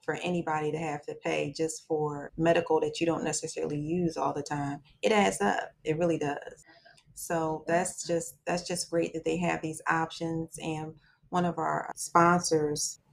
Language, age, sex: English, 30-49, female